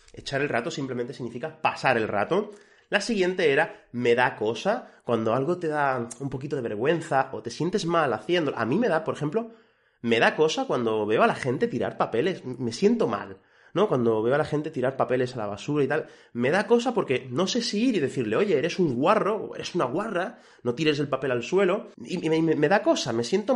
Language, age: Spanish, 30-49